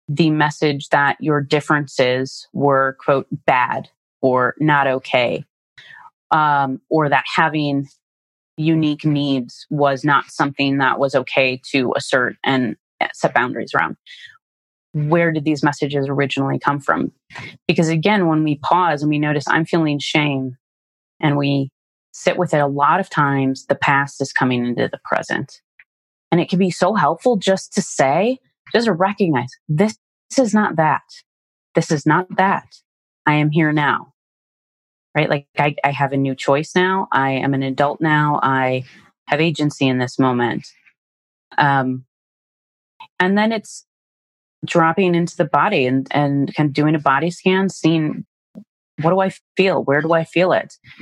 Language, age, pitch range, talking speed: English, 30-49, 135-170 Hz, 155 wpm